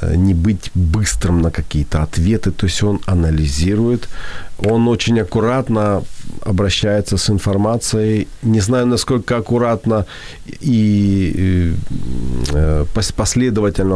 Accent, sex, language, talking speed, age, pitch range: native, male, Ukrainian, 95 wpm, 40-59, 90-115 Hz